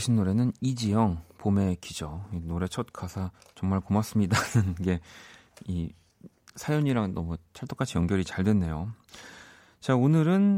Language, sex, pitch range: Korean, male, 90-115 Hz